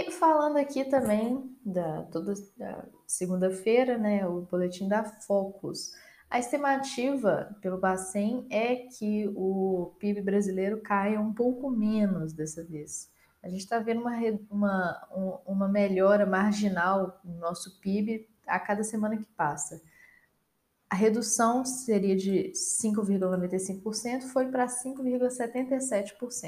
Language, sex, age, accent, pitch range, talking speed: Portuguese, female, 10-29, Brazilian, 190-240 Hz, 120 wpm